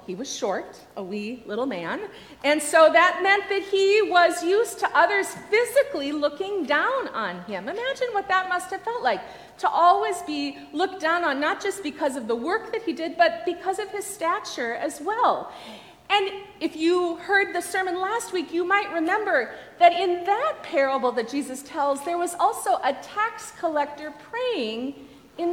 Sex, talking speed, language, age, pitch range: female, 180 wpm, English, 40-59, 305-400 Hz